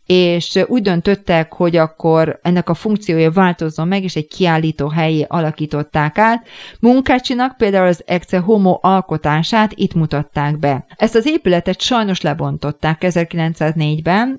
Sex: female